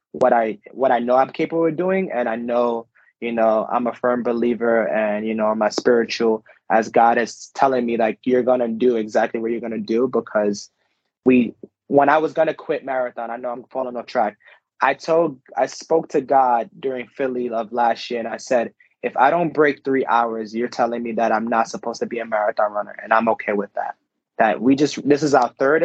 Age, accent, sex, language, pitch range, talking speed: 20-39, American, male, English, 110-130 Hz, 220 wpm